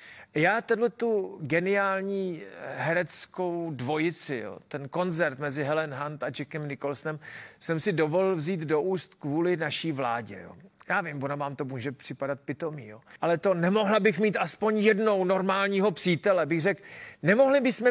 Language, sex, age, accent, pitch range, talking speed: Czech, male, 40-59, native, 140-190 Hz, 160 wpm